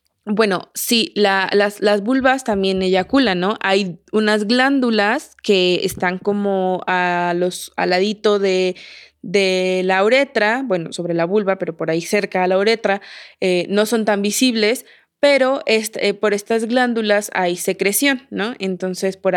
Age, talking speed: 20-39, 150 wpm